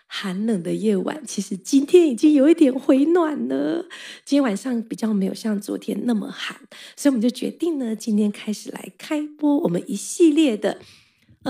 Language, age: Chinese, 20-39